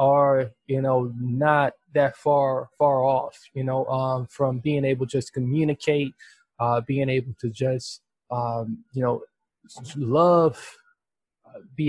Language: English